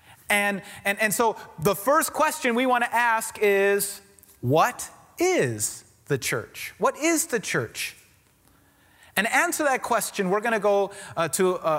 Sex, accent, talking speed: male, American, 165 wpm